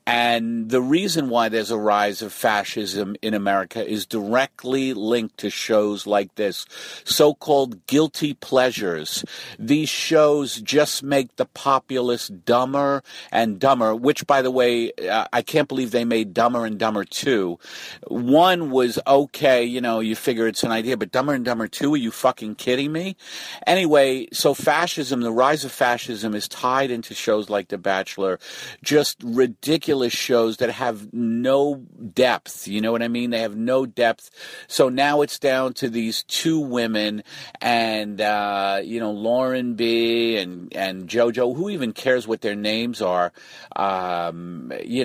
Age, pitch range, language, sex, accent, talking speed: 50-69, 110-135 Hz, English, male, American, 160 wpm